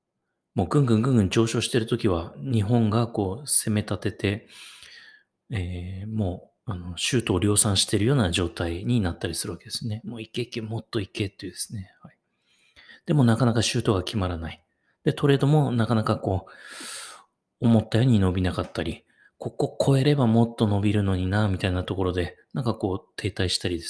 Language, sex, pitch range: Japanese, male, 95-120 Hz